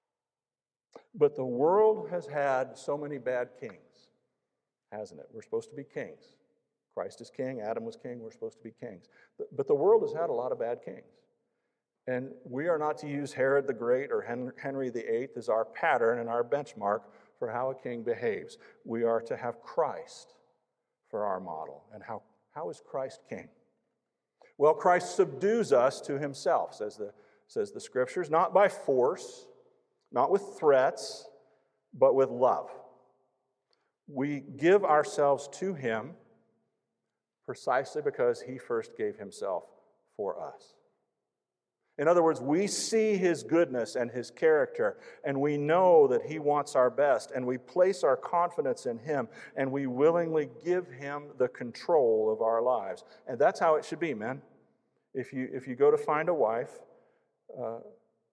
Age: 50-69